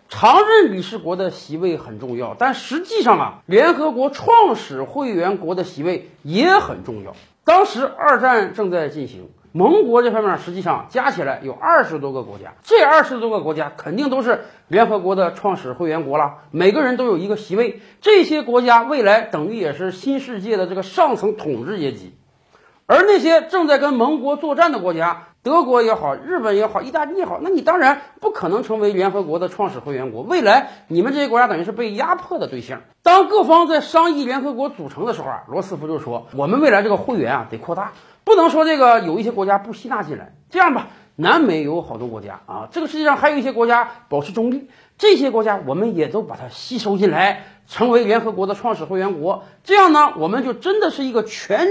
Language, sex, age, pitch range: Chinese, male, 50-69, 185-305 Hz